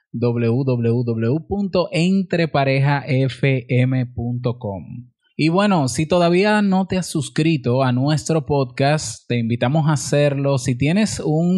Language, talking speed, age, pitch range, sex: Spanish, 100 wpm, 20-39, 120-155 Hz, male